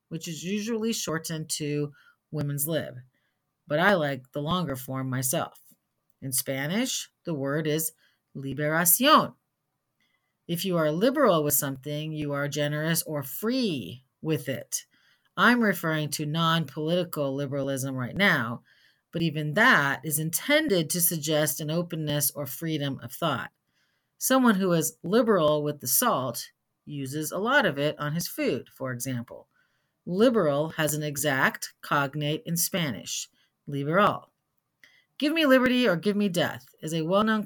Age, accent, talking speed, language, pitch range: 40-59, American, 140 wpm, English, 140-180 Hz